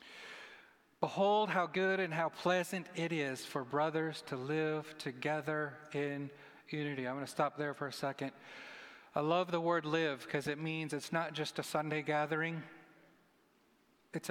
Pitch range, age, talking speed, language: 145-165 Hz, 40-59, 160 wpm, English